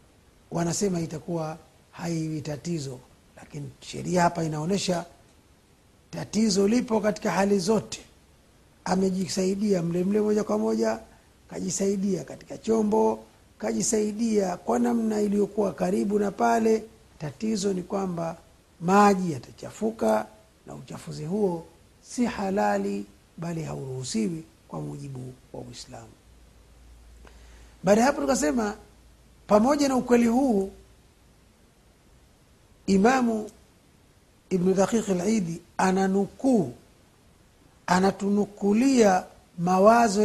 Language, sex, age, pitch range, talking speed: Swahili, male, 50-69, 160-215 Hz, 85 wpm